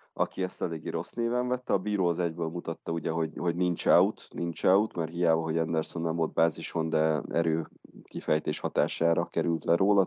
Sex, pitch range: male, 80-100 Hz